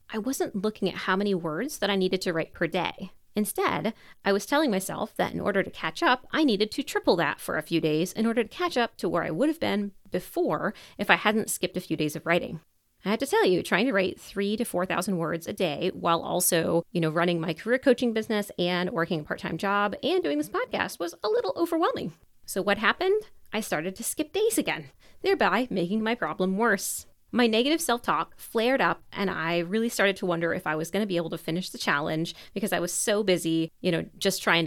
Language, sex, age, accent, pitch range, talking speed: English, female, 30-49, American, 170-235 Hz, 235 wpm